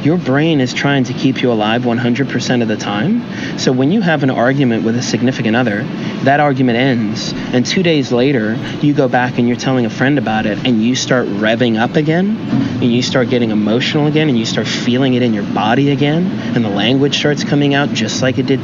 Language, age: English, 30-49